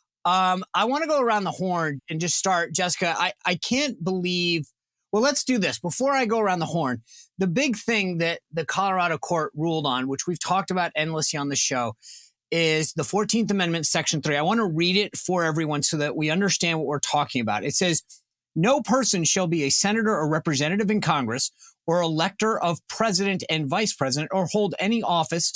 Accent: American